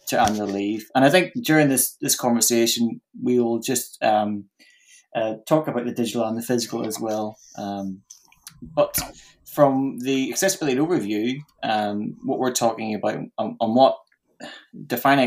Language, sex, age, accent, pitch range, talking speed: English, male, 20-39, British, 110-135 Hz, 145 wpm